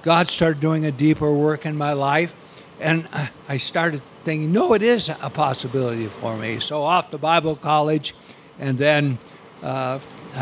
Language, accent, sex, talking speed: English, American, male, 160 wpm